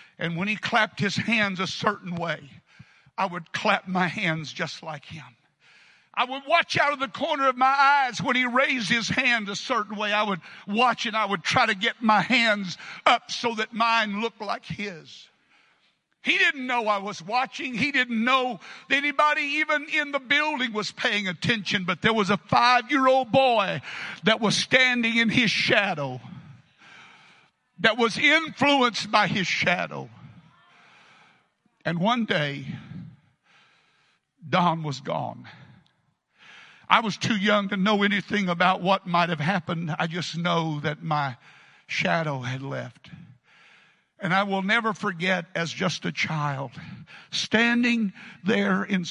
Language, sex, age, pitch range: English, male, 60-79, 175-235 Hz